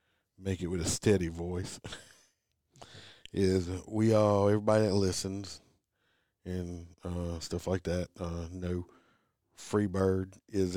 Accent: American